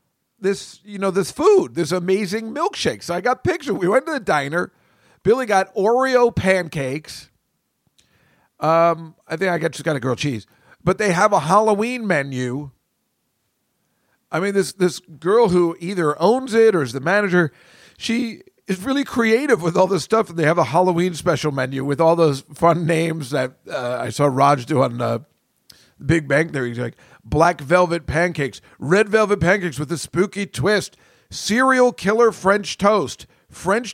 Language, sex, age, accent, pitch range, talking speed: English, male, 50-69, American, 155-205 Hz, 175 wpm